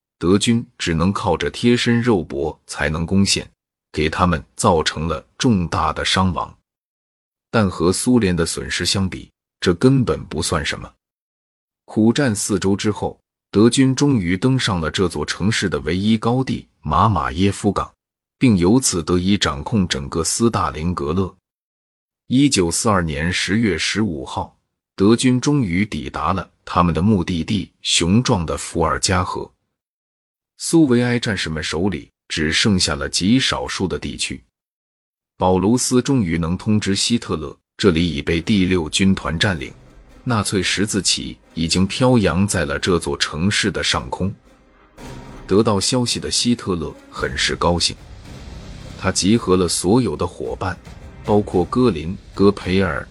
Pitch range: 85-115 Hz